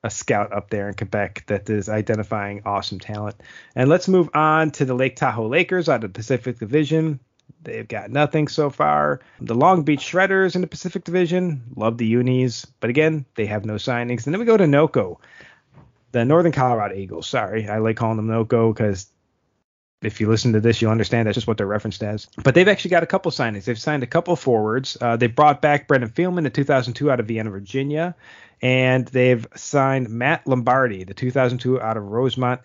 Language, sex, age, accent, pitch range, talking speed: English, male, 30-49, American, 110-150 Hz, 205 wpm